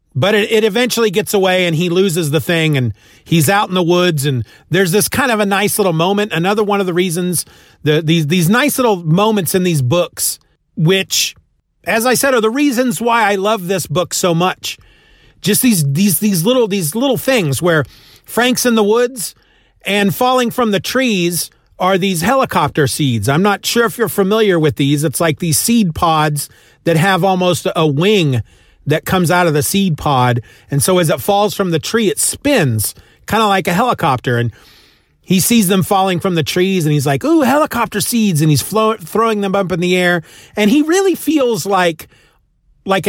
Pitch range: 160-220 Hz